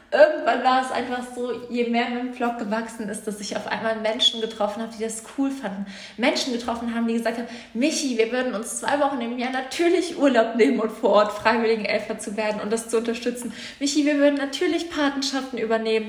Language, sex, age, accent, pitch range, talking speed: German, female, 20-39, German, 225-265 Hz, 210 wpm